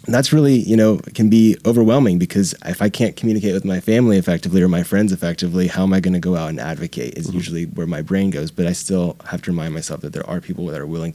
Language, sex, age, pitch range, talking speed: English, male, 20-39, 80-100 Hz, 270 wpm